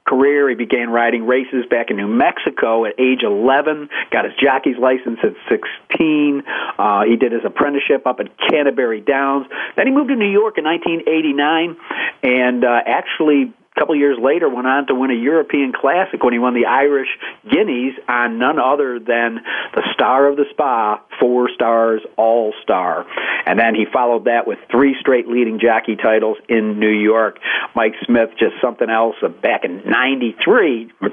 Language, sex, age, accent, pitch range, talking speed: English, male, 50-69, American, 115-135 Hz, 170 wpm